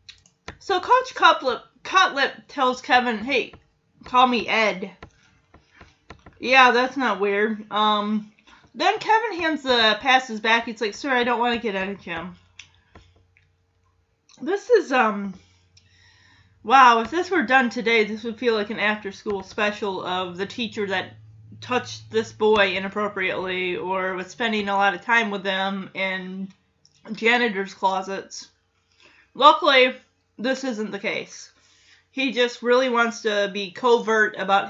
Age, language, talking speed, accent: 20-39, English, 140 wpm, American